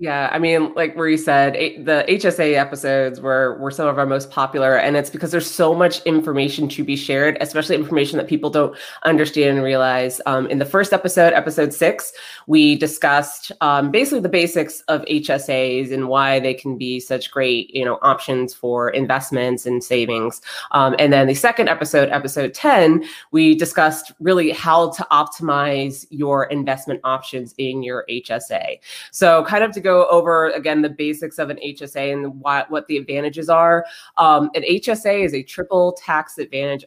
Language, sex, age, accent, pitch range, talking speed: English, female, 20-39, American, 135-160 Hz, 175 wpm